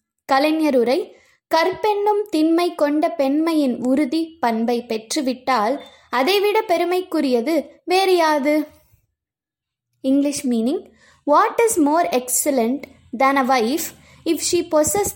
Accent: native